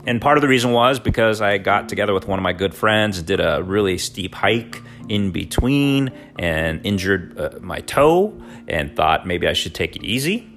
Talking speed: 205 wpm